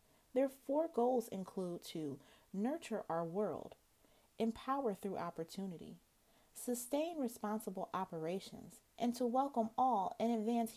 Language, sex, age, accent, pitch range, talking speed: English, female, 30-49, American, 190-235 Hz, 110 wpm